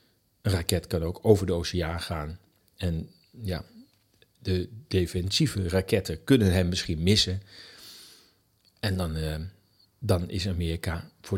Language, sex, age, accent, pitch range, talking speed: Dutch, male, 40-59, Dutch, 95-120 Hz, 125 wpm